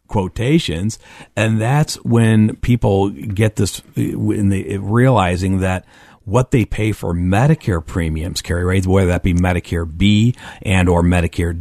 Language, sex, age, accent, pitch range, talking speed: English, male, 40-59, American, 90-115 Hz, 130 wpm